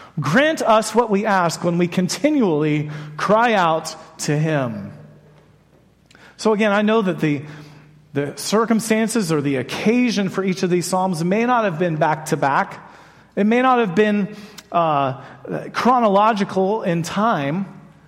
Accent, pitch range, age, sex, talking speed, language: American, 185-255 Hz, 40-59, male, 140 wpm, English